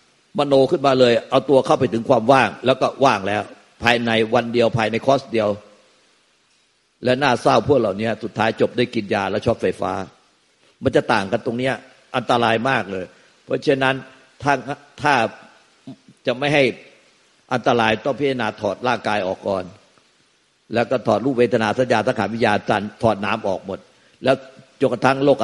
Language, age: Thai, 60-79